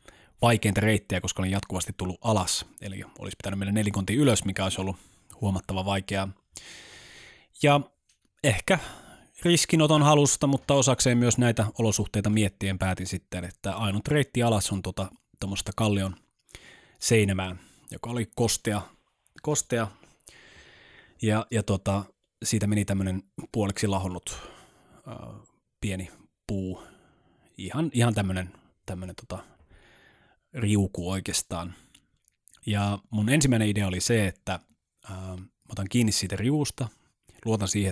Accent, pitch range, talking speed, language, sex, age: native, 95-115 Hz, 115 wpm, Finnish, male, 20-39